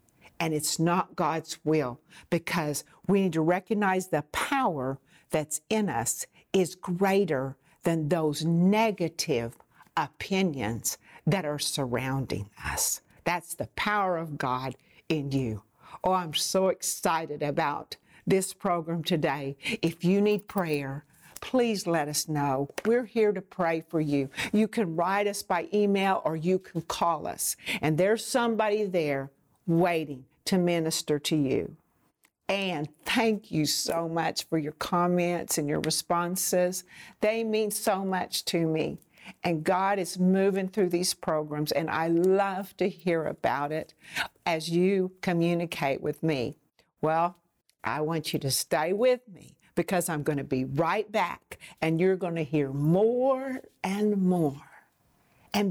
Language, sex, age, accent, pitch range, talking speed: English, female, 60-79, American, 155-195 Hz, 145 wpm